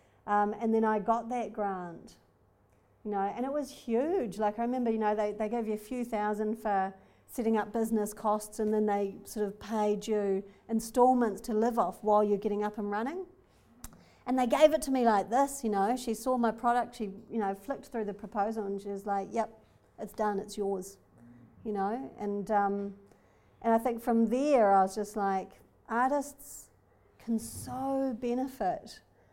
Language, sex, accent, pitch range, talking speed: English, female, Australian, 205-250 Hz, 190 wpm